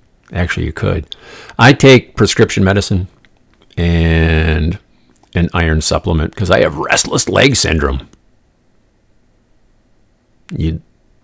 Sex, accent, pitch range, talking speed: male, American, 80-105 Hz, 95 wpm